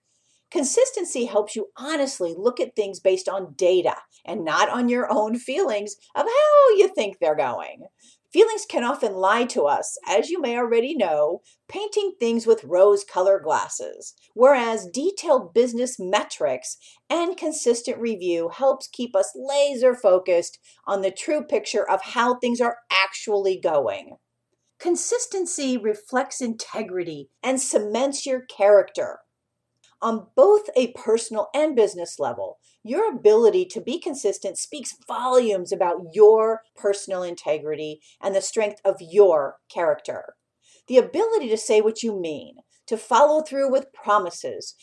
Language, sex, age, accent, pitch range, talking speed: English, female, 50-69, American, 195-280 Hz, 135 wpm